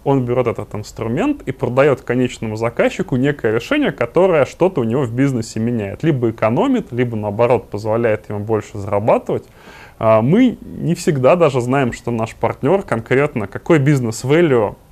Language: Russian